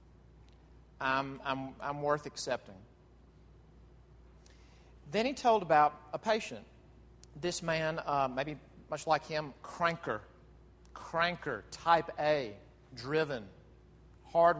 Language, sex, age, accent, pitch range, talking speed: English, male, 40-59, American, 125-165 Hz, 95 wpm